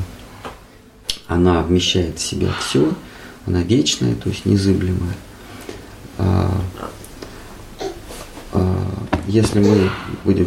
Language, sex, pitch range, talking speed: Russian, male, 95-125 Hz, 75 wpm